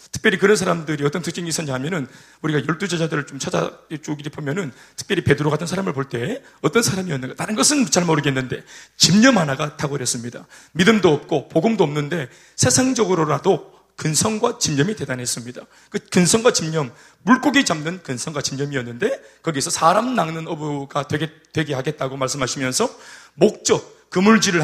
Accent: native